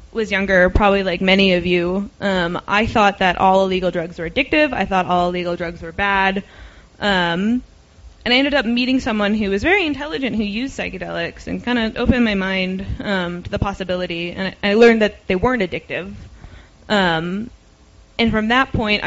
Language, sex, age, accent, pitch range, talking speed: English, female, 20-39, American, 180-230 Hz, 190 wpm